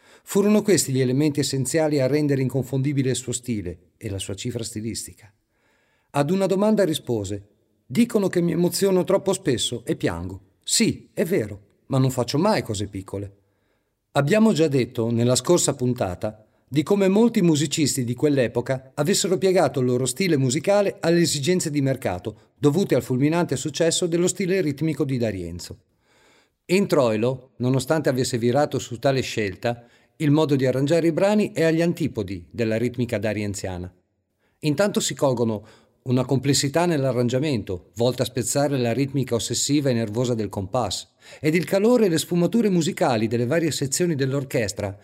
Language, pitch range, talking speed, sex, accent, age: Italian, 115-165 Hz, 155 wpm, male, native, 50-69